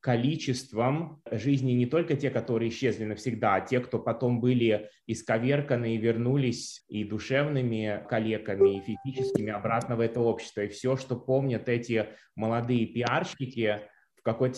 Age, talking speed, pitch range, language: 20-39, 140 wpm, 110-125 Hz, Russian